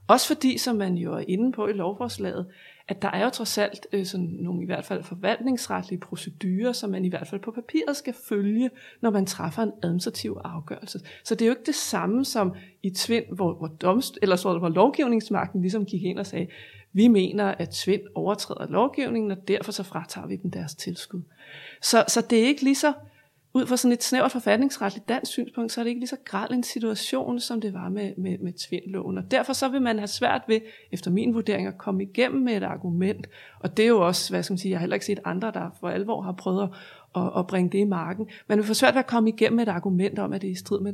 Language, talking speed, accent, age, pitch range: Danish, 240 wpm, native, 30-49, 185-235 Hz